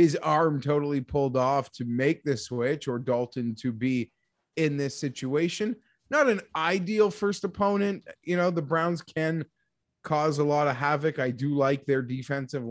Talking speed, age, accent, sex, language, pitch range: 170 wpm, 20-39, American, male, English, 140-190 Hz